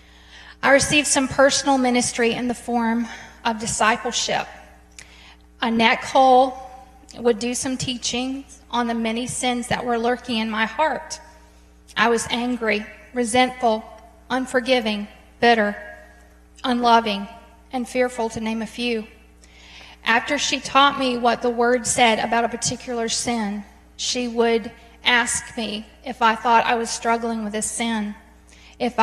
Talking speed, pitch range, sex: 135 wpm, 220-245 Hz, female